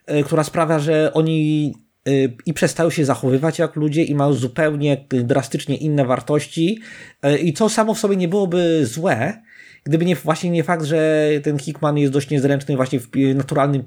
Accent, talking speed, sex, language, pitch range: native, 165 wpm, male, Polish, 130-155 Hz